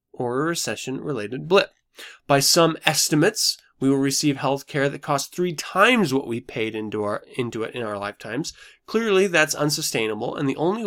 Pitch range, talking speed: 120-165 Hz, 170 wpm